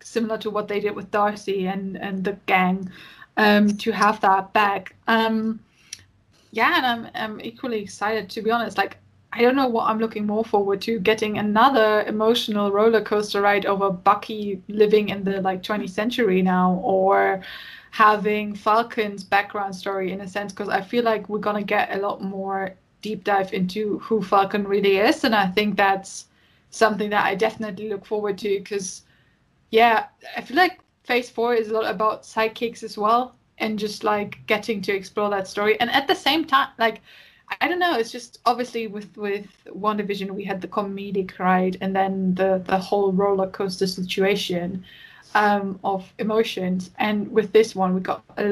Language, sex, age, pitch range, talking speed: English, female, 20-39, 195-225 Hz, 180 wpm